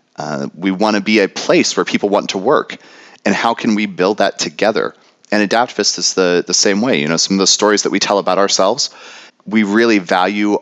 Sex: male